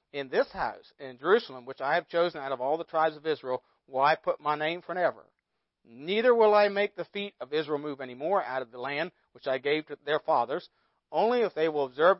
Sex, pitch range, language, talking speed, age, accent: male, 135-210 Hz, English, 235 wpm, 40-59, American